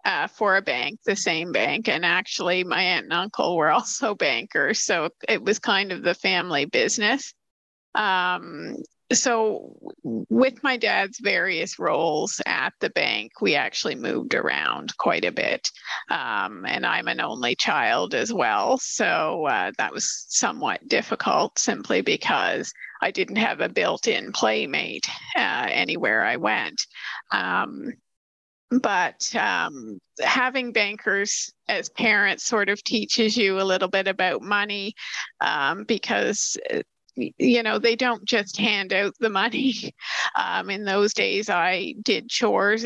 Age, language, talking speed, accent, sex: 30-49, English, 145 wpm, American, female